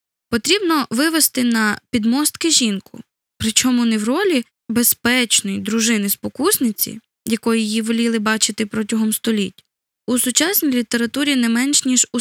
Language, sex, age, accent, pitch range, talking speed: Ukrainian, female, 10-29, native, 210-255 Hz, 125 wpm